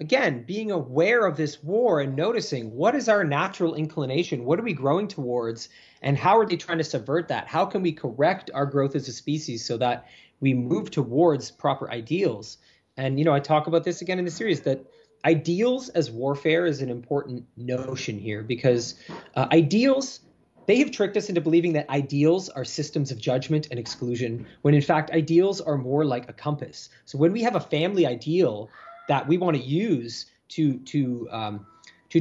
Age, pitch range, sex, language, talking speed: 30-49, 130-170 Hz, male, English, 190 wpm